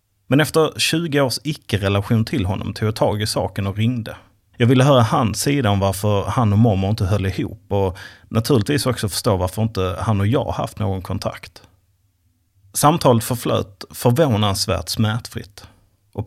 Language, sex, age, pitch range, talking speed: Swedish, male, 30-49, 100-120 Hz, 160 wpm